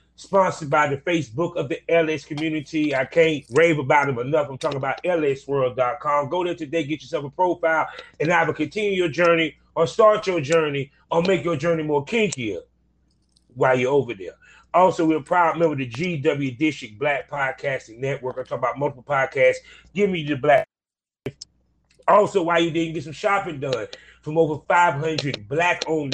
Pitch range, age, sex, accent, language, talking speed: 145-175 Hz, 30-49, male, American, English, 175 wpm